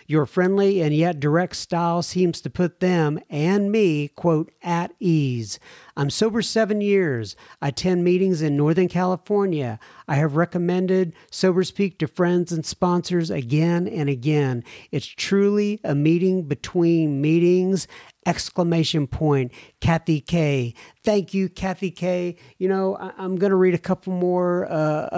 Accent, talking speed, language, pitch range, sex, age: American, 145 wpm, English, 140-180 Hz, male, 50-69